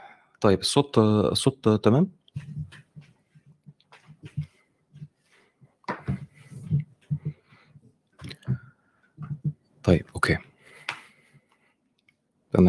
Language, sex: Arabic, male